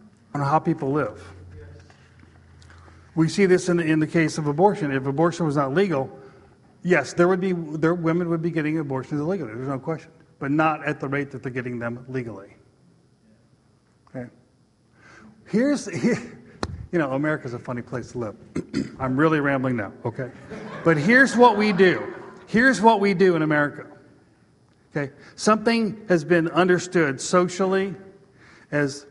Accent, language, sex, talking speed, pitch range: American, English, male, 155 wpm, 135-185 Hz